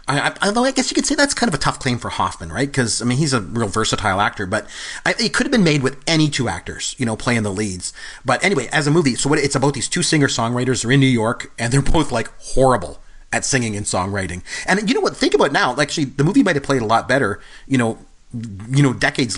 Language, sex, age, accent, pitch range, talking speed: English, male, 40-59, American, 110-140 Hz, 260 wpm